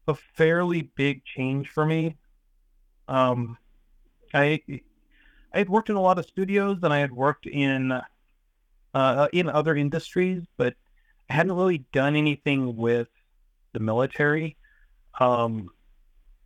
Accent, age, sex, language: American, 40-59, male, English